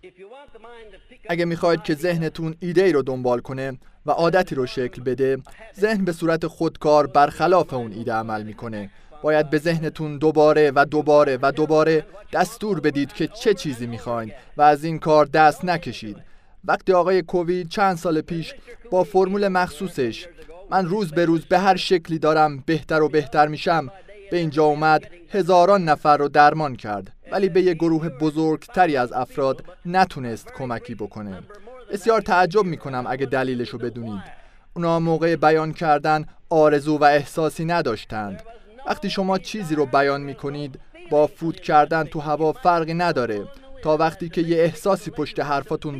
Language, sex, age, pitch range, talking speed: Persian, male, 30-49, 140-180 Hz, 155 wpm